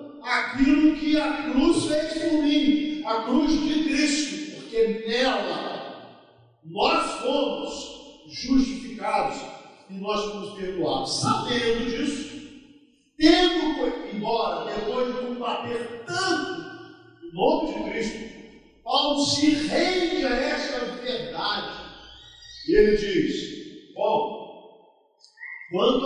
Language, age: Portuguese, 50-69